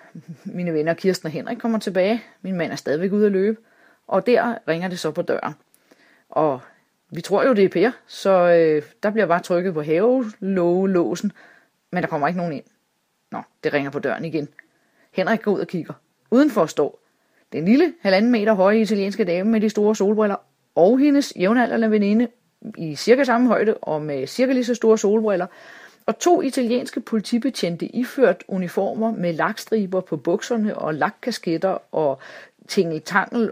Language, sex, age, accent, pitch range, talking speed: Danish, female, 30-49, native, 170-230 Hz, 175 wpm